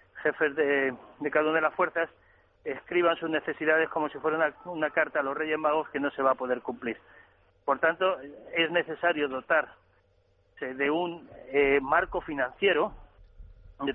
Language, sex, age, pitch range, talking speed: Spanish, male, 40-59, 145-180 Hz, 170 wpm